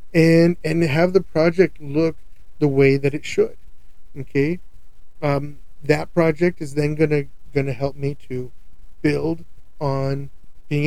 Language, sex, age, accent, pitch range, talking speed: English, male, 40-59, American, 140-160 Hz, 150 wpm